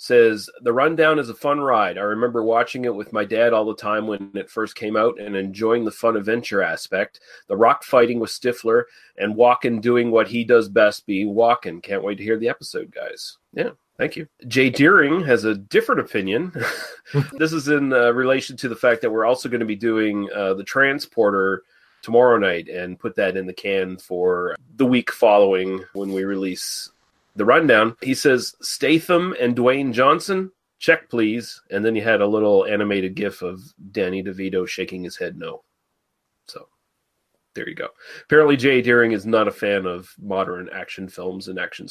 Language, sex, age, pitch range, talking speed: English, male, 30-49, 100-130 Hz, 190 wpm